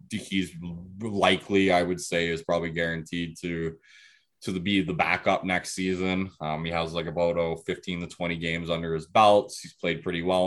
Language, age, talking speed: English, 20-39, 190 wpm